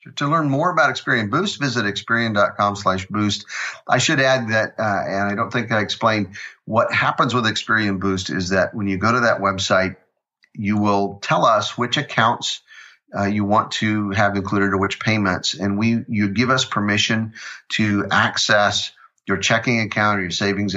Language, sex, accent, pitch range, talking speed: English, male, American, 95-110 Hz, 180 wpm